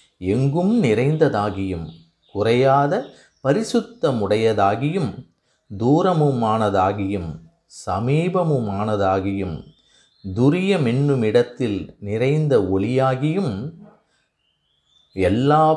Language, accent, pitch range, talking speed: Tamil, native, 100-155 Hz, 40 wpm